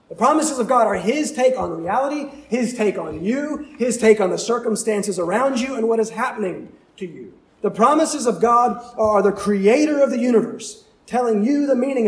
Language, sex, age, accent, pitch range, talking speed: English, male, 30-49, American, 195-260 Hz, 200 wpm